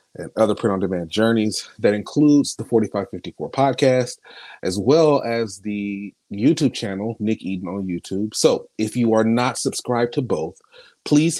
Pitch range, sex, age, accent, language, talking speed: 100-140 Hz, male, 30-49, American, English, 145 wpm